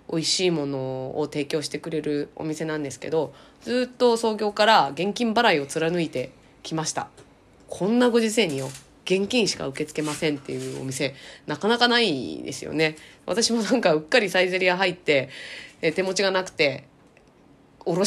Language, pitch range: Japanese, 140-205 Hz